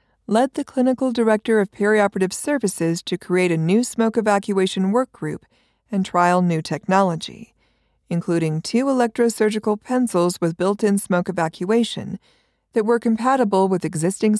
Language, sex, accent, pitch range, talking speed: English, female, American, 175-220 Hz, 135 wpm